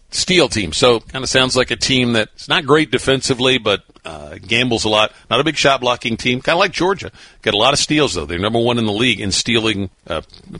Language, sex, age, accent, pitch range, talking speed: English, male, 60-79, American, 95-120 Hz, 240 wpm